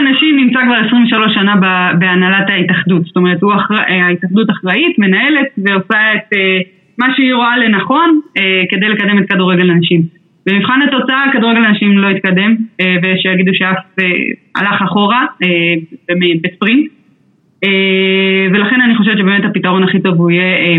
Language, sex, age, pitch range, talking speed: Hebrew, female, 20-39, 185-240 Hz, 125 wpm